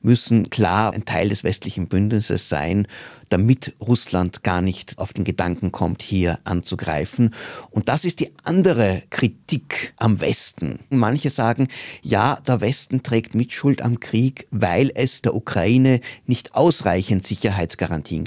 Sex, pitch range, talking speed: male, 95-120 Hz, 140 wpm